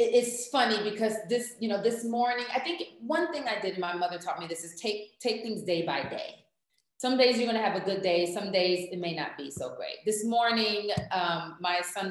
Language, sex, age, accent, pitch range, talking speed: English, female, 30-49, American, 155-210 Hz, 240 wpm